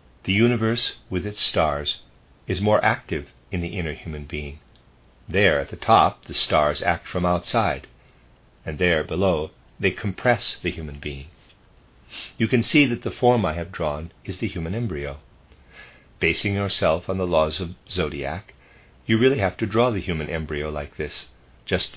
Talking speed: 165 wpm